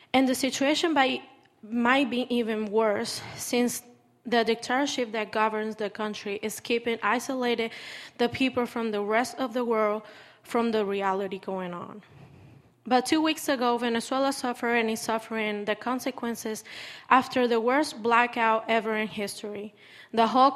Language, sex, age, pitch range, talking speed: English, female, 20-39, 215-245 Hz, 145 wpm